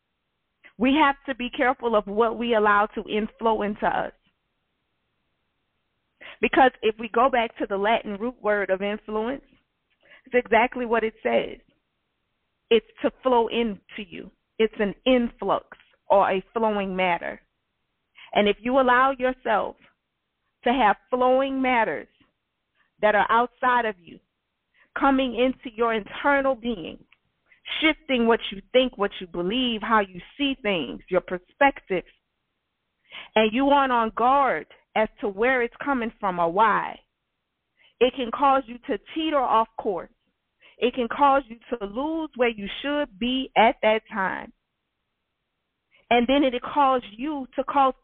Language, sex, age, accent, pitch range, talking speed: English, female, 40-59, American, 215-270 Hz, 145 wpm